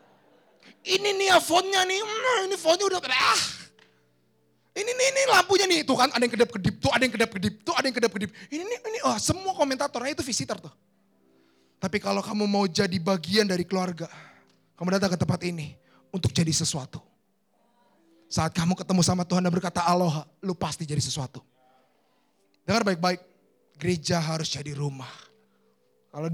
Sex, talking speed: male, 160 wpm